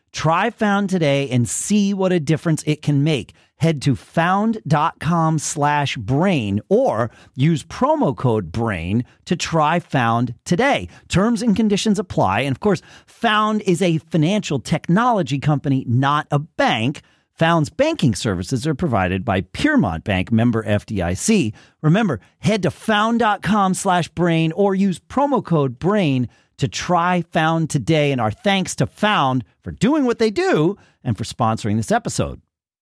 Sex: male